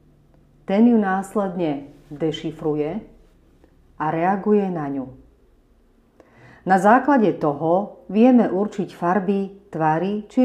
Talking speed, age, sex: 90 wpm, 40-59, female